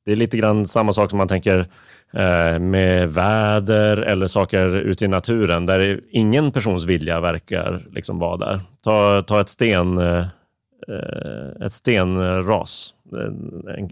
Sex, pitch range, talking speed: male, 90-105 Hz, 135 wpm